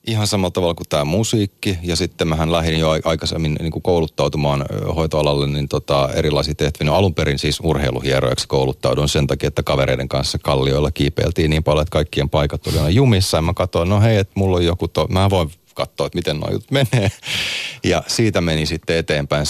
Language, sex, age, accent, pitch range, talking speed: Finnish, male, 30-49, native, 70-90 Hz, 190 wpm